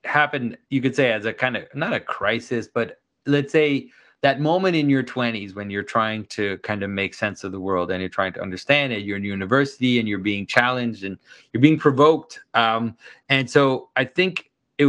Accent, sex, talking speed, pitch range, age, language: American, male, 215 wpm, 105-135 Hz, 30-49, English